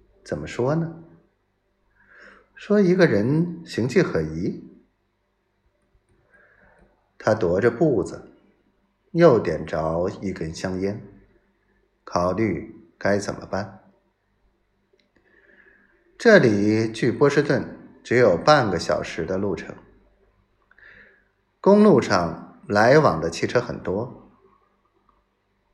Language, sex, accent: Chinese, male, native